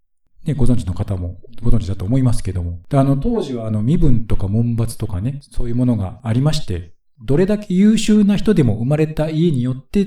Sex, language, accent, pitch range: male, Japanese, native, 105-165 Hz